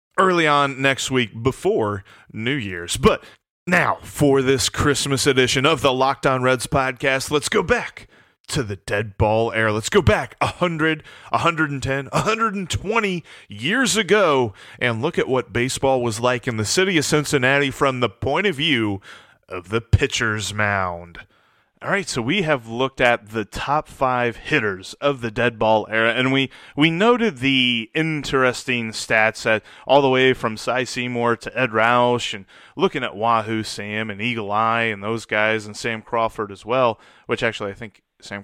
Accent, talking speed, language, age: American, 170 wpm, English, 30-49